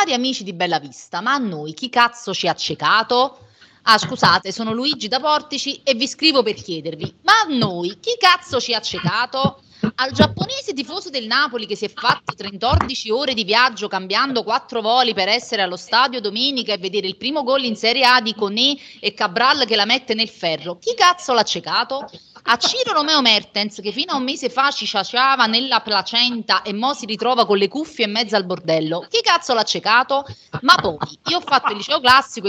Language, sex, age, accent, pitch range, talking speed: Italian, female, 30-49, native, 200-260 Hz, 205 wpm